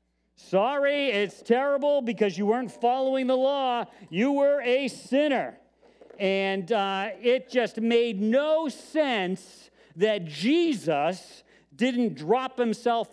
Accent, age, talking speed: American, 50-69, 115 wpm